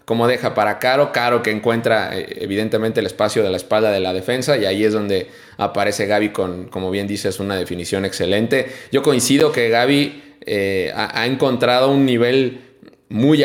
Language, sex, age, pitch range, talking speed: Spanish, male, 20-39, 105-145 Hz, 180 wpm